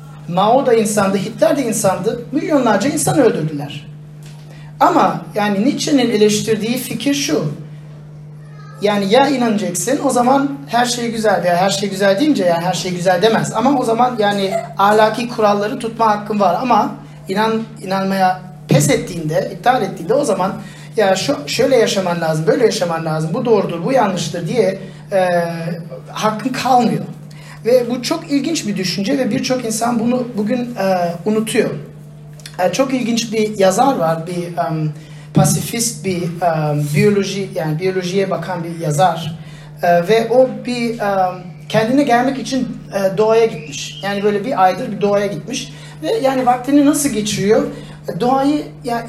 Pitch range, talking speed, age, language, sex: 165-235 Hz, 150 wpm, 40-59, Turkish, male